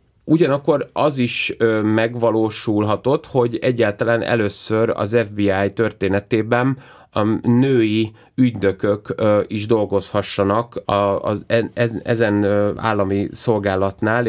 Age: 30-49